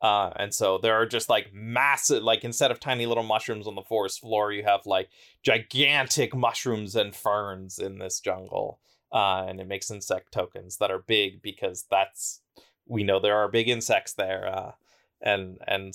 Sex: male